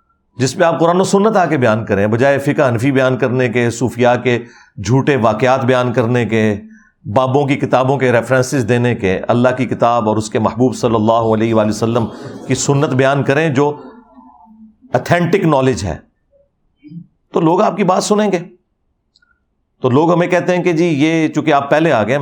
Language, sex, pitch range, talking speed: Urdu, male, 120-170 Hz, 190 wpm